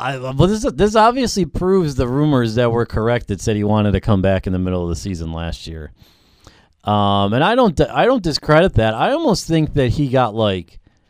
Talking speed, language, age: 220 wpm, English, 40-59